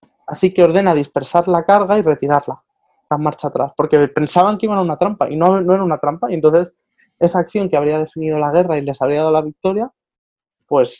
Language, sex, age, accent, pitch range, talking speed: Spanish, male, 20-39, Spanish, 160-220 Hz, 220 wpm